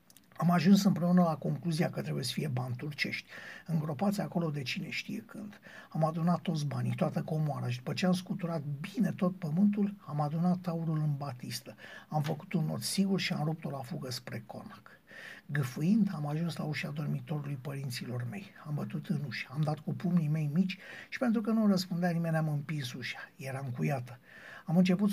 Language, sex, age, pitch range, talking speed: Romanian, male, 60-79, 160-200 Hz, 190 wpm